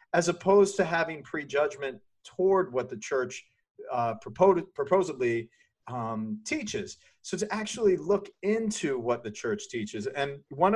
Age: 40-59